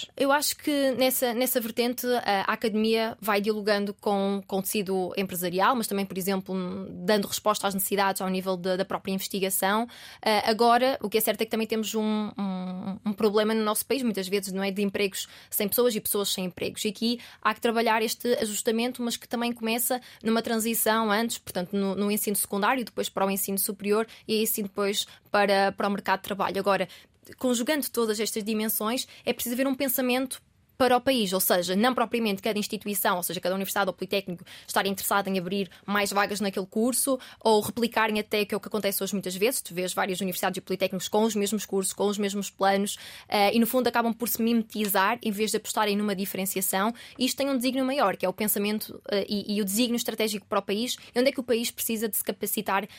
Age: 20-39